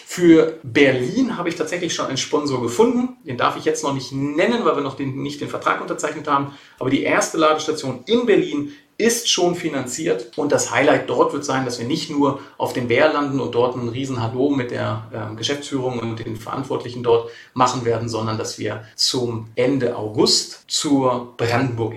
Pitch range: 115-145 Hz